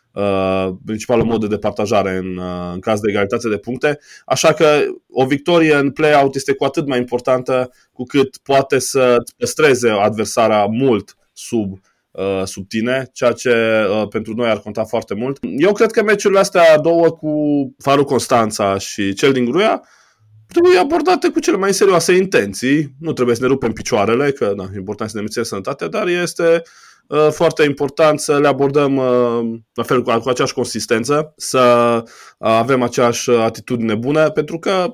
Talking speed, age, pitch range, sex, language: 170 wpm, 20-39, 110-155 Hz, male, Romanian